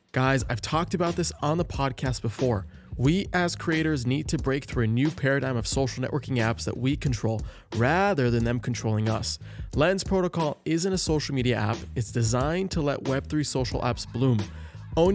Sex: male